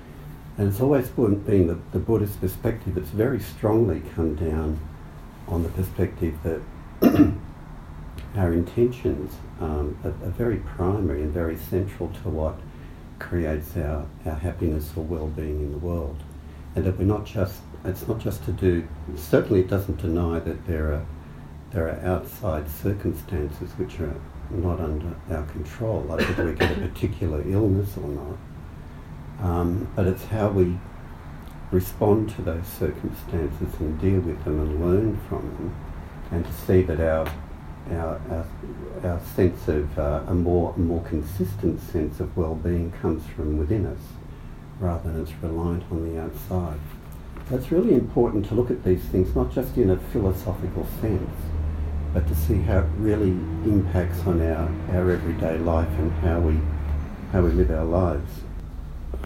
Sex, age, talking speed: male, 60-79, 155 wpm